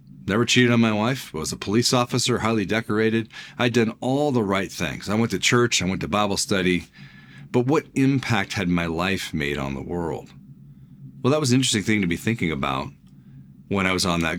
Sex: male